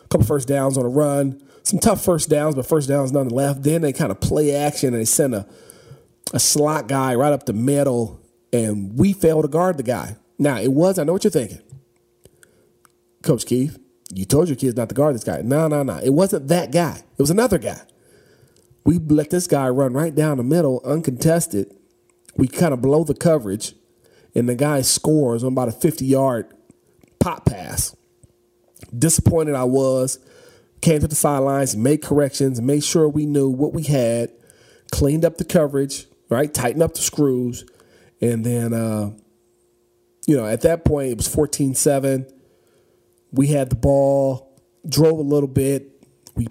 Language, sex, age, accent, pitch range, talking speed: English, male, 40-59, American, 125-150 Hz, 185 wpm